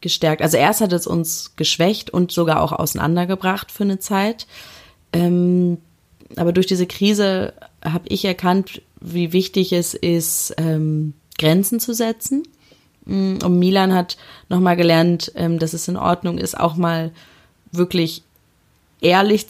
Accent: German